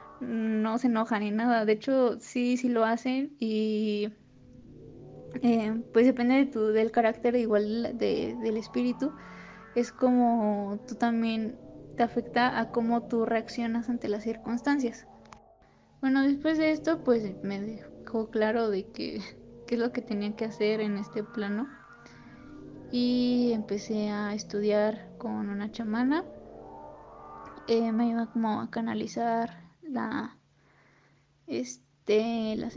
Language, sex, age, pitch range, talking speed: Spanish, female, 20-39, 220-245 Hz, 130 wpm